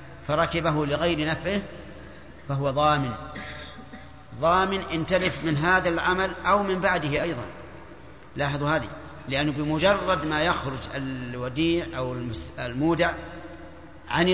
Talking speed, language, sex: 110 wpm, Arabic, male